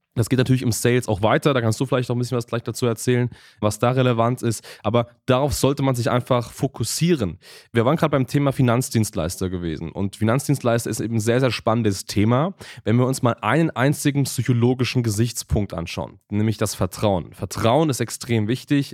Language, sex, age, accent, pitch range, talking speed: German, male, 20-39, German, 110-130 Hz, 195 wpm